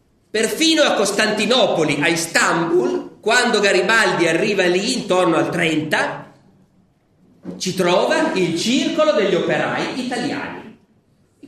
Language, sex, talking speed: Italian, male, 105 wpm